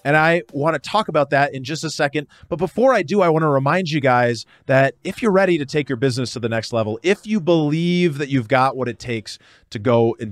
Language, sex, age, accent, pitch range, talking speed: English, male, 30-49, American, 115-150 Hz, 260 wpm